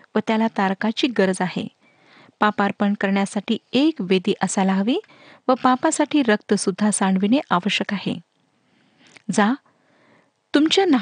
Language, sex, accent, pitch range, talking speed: Marathi, female, native, 200-265 Hz, 110 wpm